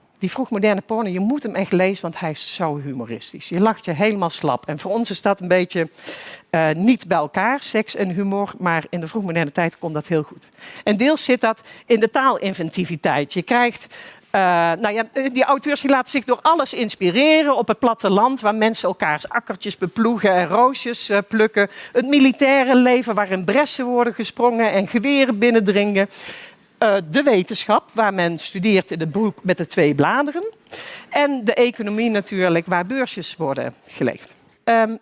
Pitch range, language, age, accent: 185-255 Hz, Dutch, 50-69, Dutch